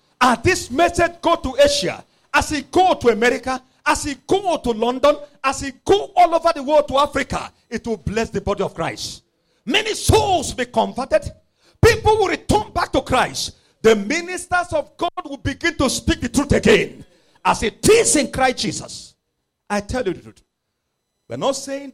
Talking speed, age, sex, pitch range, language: 185 wpm, 50-69, male, 240-340 Hz, English